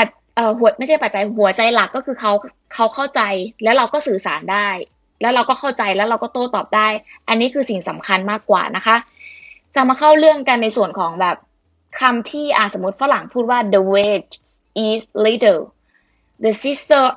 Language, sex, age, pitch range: Thai, female, 20-39, 205-245 Hz